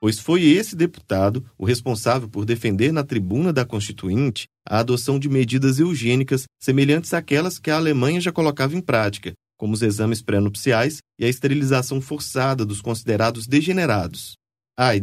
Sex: male